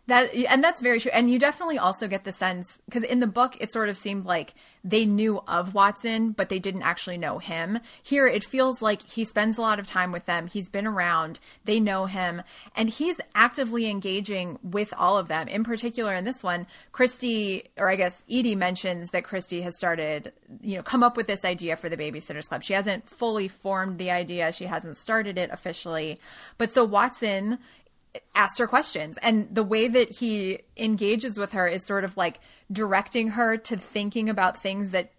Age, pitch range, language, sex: 20-39, 185-225 Hz, English, female